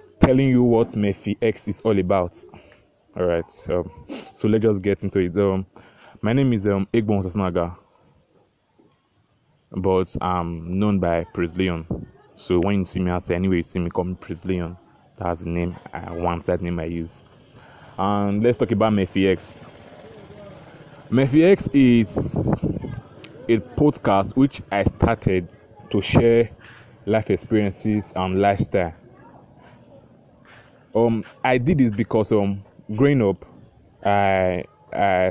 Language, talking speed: English, 140 wpm